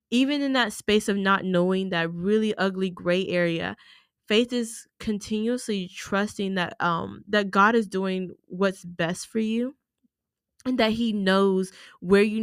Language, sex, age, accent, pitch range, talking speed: English, female, 10-29, American, 180-225 Hz, 155 wpm